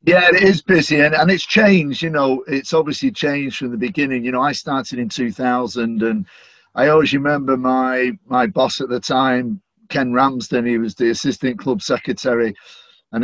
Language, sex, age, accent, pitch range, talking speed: English, male, 50-69, British, 120-145 Hz, 185 wpm